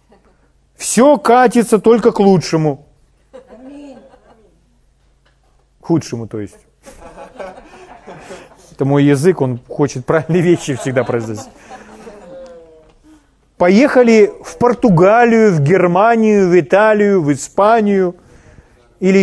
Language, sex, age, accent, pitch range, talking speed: Russian, male, 40-59, native, 145-230 Hz, 85 wpm